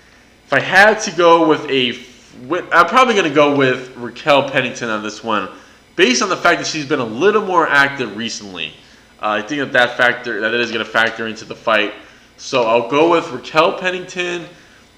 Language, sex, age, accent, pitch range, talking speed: English, male, 20-39, American, 120-160 Hz, 195 wpm